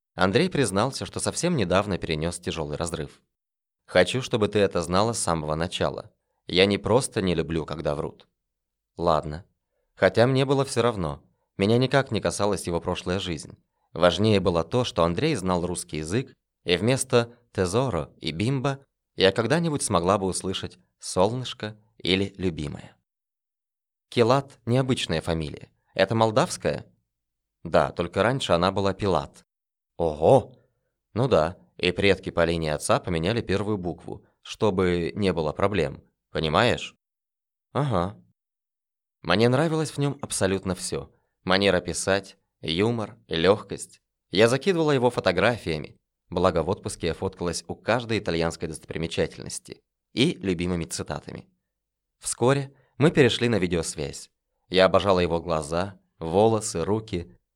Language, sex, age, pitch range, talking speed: Russian, male, 20-39, 85-120 Hz, 125 wpm